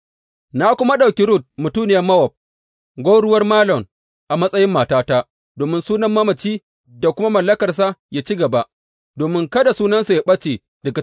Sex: male